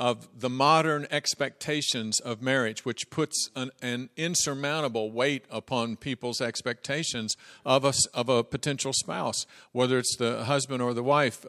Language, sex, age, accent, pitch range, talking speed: English, male, 50-69, American, 120-140 Hz, 145 wpm